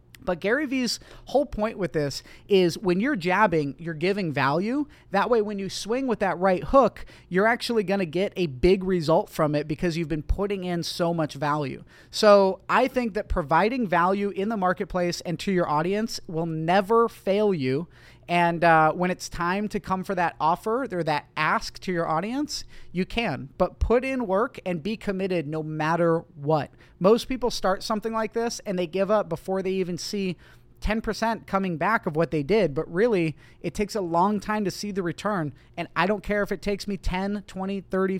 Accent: American